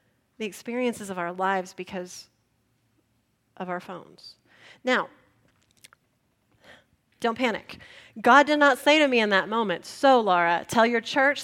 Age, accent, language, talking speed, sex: 30-49, American, English, 135 wpm, female